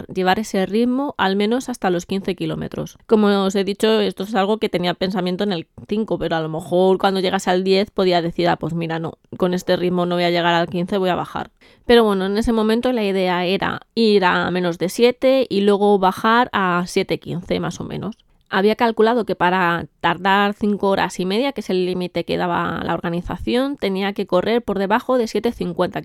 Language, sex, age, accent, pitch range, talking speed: Spanish, female, 20-39, Spanish, 175-205 Hz, 215 wpm